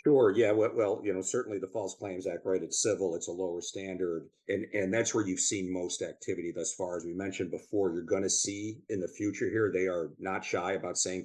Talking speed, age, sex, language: 240 wpm, 50-69, male, English